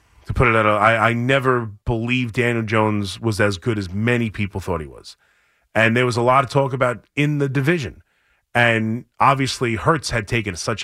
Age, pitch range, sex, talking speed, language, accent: 30-49, 110-145 Hz, male, 200 wpm, English, American